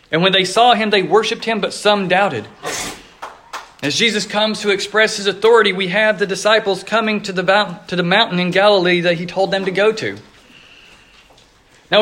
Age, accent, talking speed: 40-59, American, 180 wpm